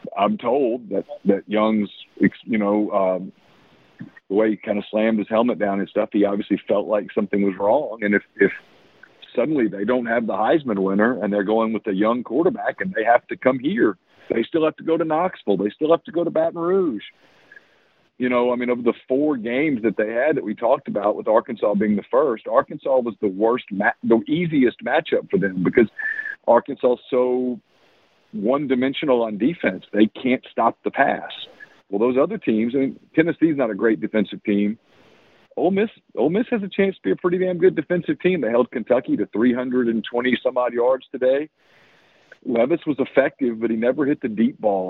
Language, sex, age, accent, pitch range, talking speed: English, male, 50-69, American, 110-155 Hz, 200 wpm